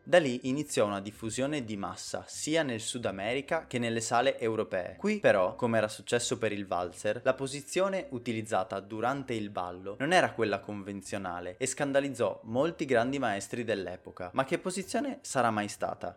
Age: 20-39